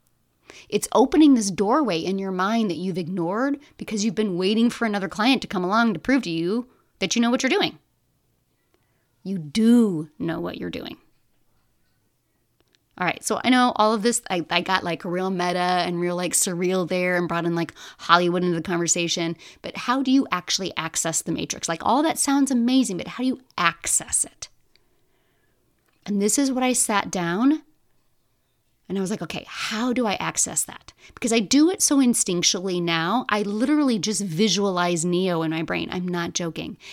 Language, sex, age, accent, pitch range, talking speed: English, female, 30-49, American, 175-235 Hz, 190 wpm